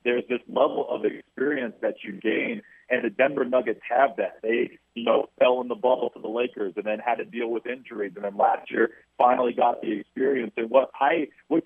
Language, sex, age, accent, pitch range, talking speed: English, male, 40-59, American, 115-145 Hz, 220 wpm